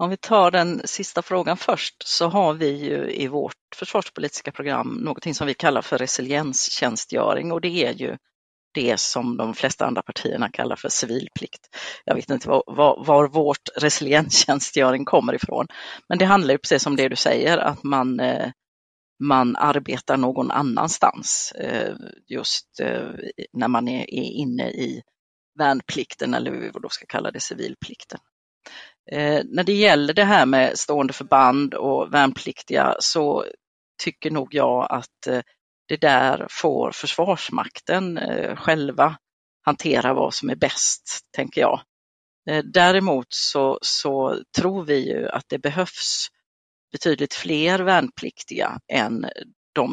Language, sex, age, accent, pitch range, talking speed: Swedish, female, 30-49, native, 135-175 Hz, 135 wpm